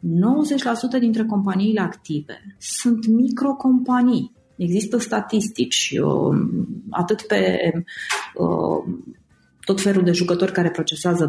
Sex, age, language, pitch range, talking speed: female, 30-49, Romanian, 165-220 Hz, 90 wpm